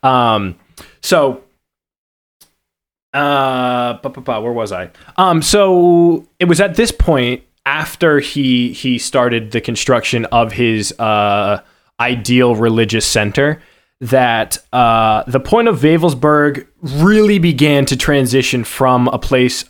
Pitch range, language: 115-145 Hz, English